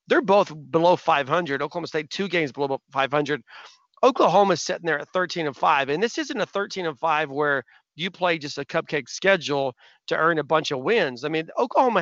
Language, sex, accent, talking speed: English, male, American, 200 wpm